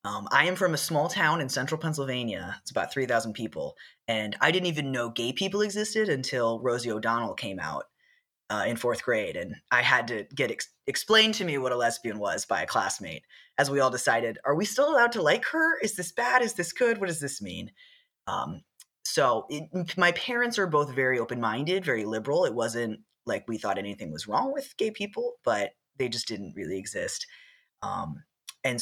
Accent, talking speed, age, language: American, 200 wpm, 20-39, English